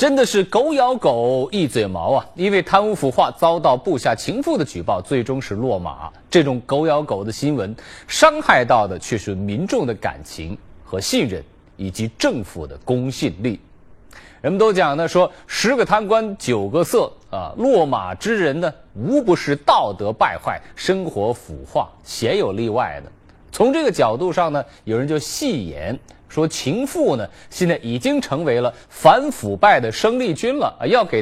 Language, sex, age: Chinese, male, 30-49